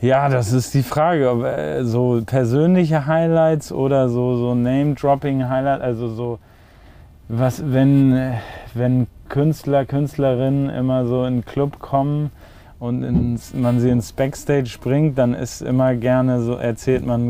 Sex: male